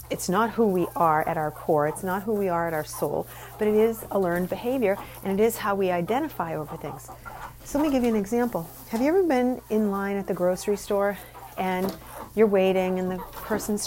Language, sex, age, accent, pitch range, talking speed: English, female, 40-59, American, 170-215 Hz, 230 wpm